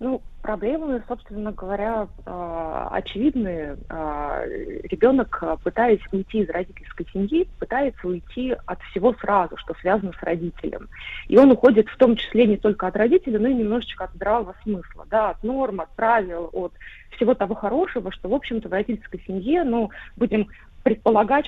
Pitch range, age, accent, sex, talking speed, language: 205-260 Hz, 30-49, native, female, 145 wpm, Russian